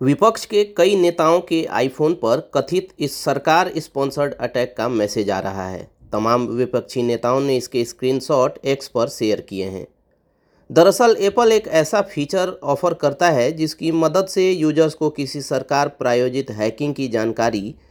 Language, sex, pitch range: Hindi, male, 125-165 Hz